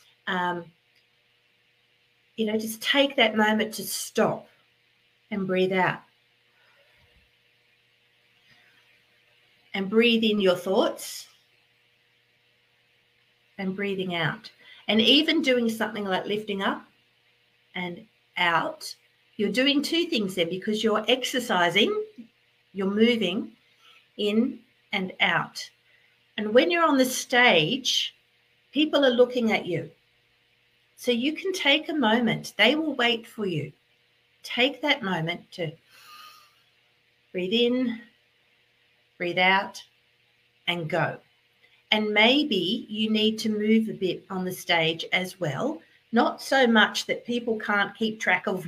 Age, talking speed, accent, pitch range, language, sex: 50-69, 120 wpm, Australian, 190-245 Hz, English, female